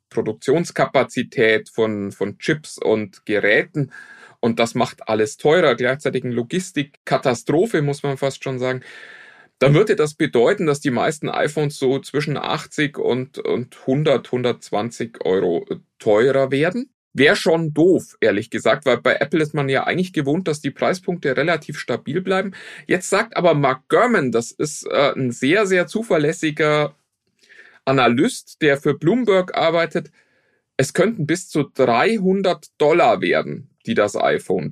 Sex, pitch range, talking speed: male, 120-165 Hz, 145 wpm